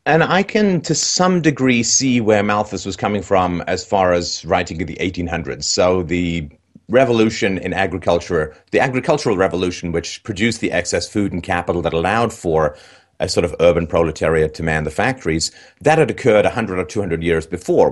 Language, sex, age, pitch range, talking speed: English, male, 30-49, 85-110 Hz, 180 wpm